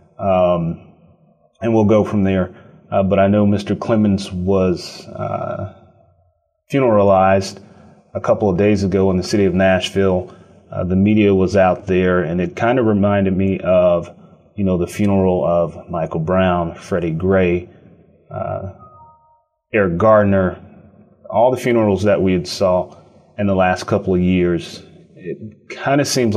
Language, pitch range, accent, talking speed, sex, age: English, 90-105 Hz, American, 150 wpm, male, 30-49